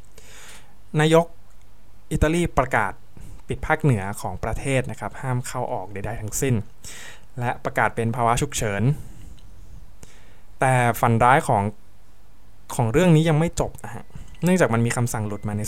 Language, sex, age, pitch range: Thai, male, 20-39, 105-135 Hz